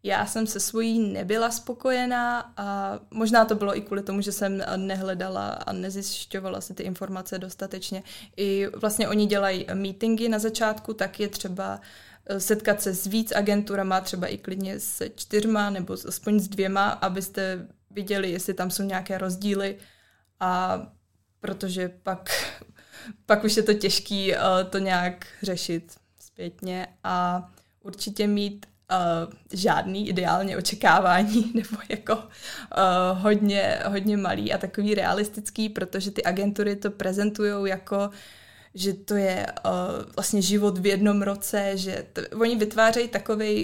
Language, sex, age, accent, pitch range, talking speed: Czech, female, 20-39, native, 190-210 Hz, 140 wpm